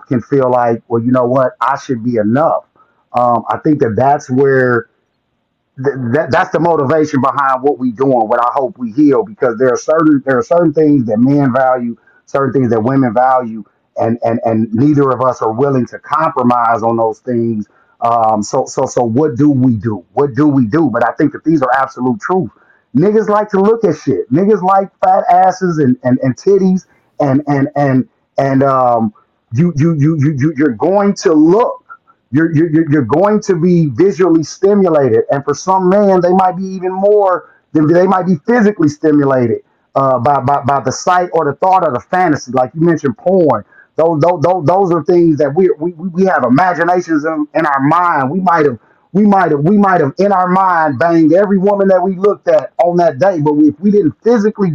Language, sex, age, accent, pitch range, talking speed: English, male, 30-49, American, 130-185 Hz, 205 wpm